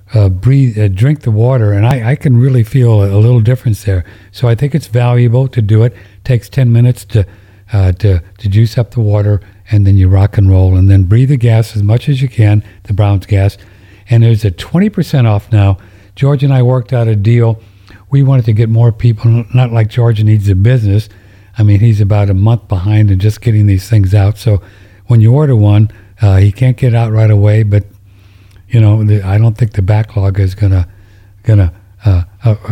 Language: English